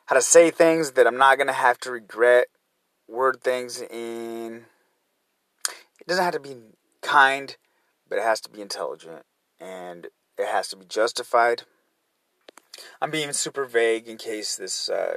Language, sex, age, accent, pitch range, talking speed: English, male, 30-49, American, 115-140 Hz, 160 wpm